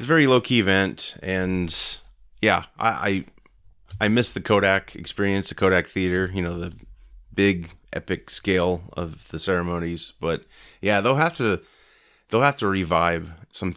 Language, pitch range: English, 85-100 Hz